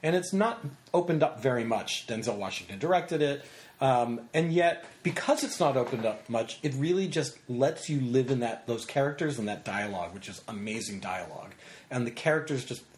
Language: English